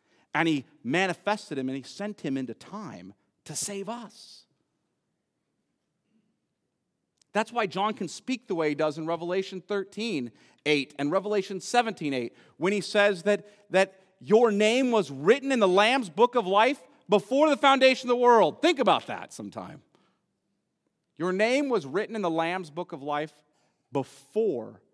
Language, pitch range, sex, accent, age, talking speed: English, 180-235 Hz, male, American, 40-59, 160 wpm